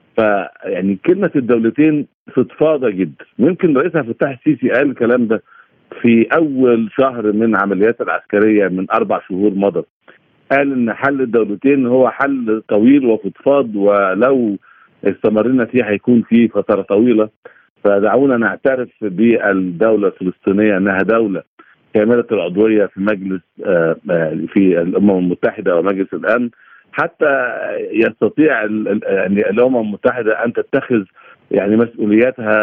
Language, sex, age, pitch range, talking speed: Arabic, male, 50-69, 100-120 Hz, 110 wpm